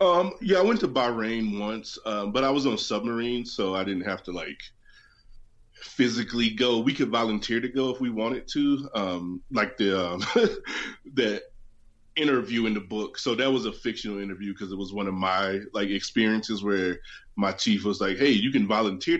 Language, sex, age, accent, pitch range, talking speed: English, male, 20-39, American, 90-115 Hz, 195 wpm